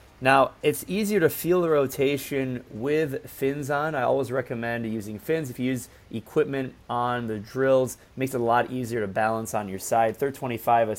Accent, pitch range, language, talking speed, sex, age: American, 120-145 Hz, English, 195 wpm, male, 30-49